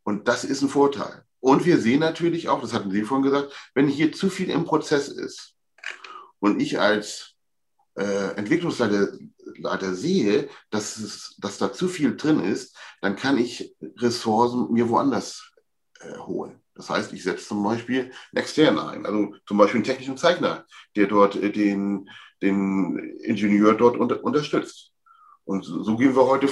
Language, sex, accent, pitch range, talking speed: German, male, German, 105-140 Hz, 165 wpm